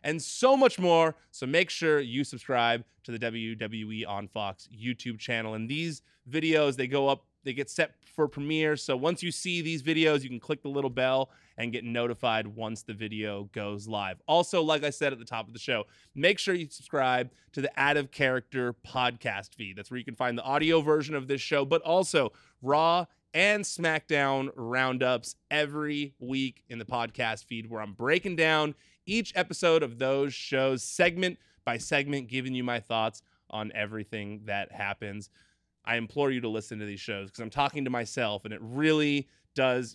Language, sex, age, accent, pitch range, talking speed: English, male, 20-39, American, 115-150 Hz, 190 wpm